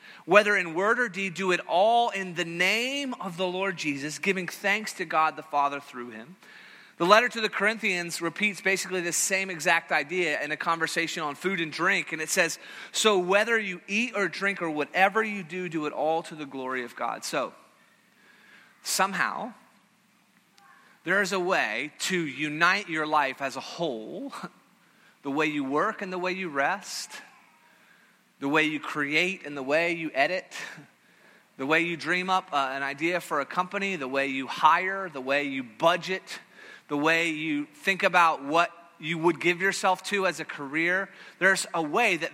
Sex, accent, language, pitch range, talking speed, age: male, American, English, 160-195 Hz, 185 wpm, 30-49